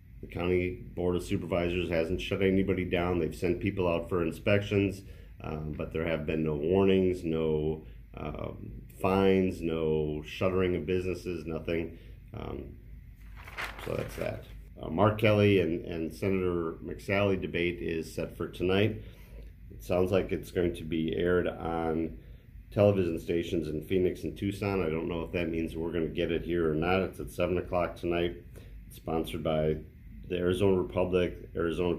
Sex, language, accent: male, English, American